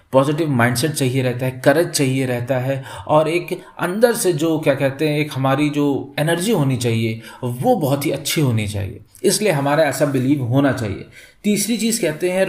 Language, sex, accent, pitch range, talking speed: Hindi, male, native, 130-170 Hz, 185 wpm